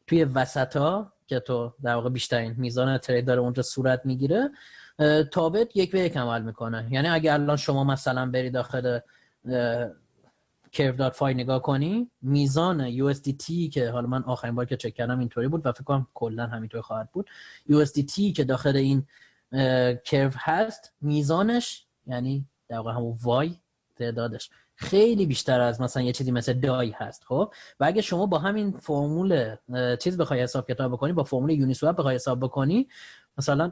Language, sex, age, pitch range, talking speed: Persian, male, 30-49, 125-165 Hz, 160 wpm